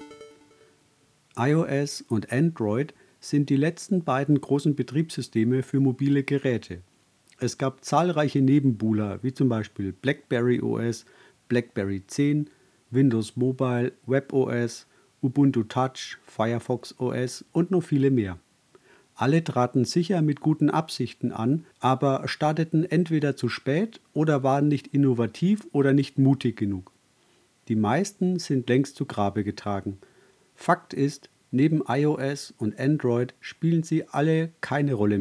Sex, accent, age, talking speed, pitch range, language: male, German, 50-69, 125 wpm, 120-150 Hz, German